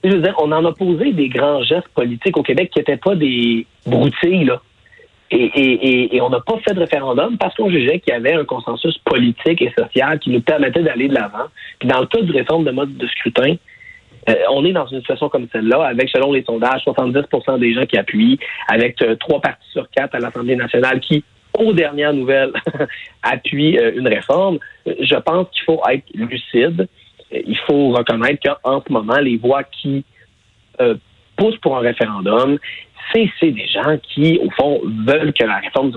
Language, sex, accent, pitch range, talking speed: French, male, Canadian, 120-165 Hz, 205 wpm